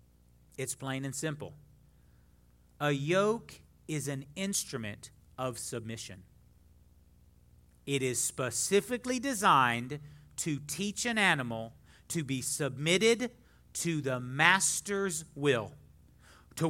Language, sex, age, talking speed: English, male, 40-59, 95 wpm